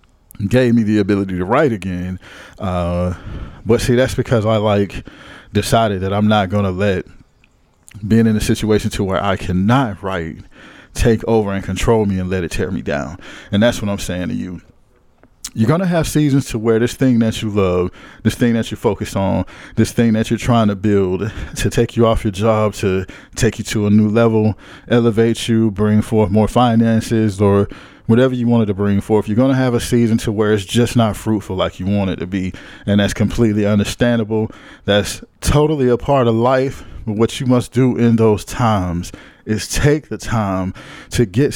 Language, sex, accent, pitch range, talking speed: English, male, American, 100-120 Hz, 205 wpm